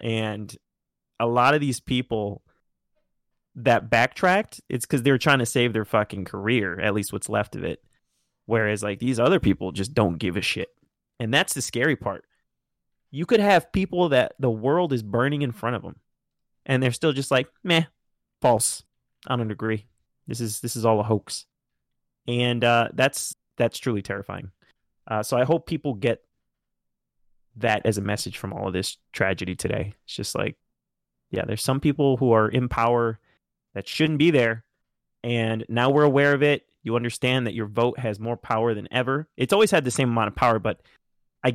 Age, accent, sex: 20-39, American, male